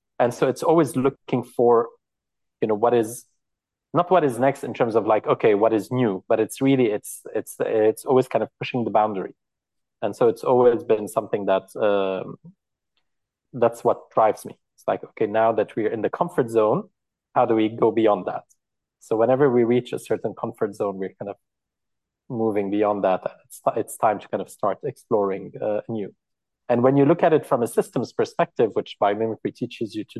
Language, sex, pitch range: English, male, 105-130 Hz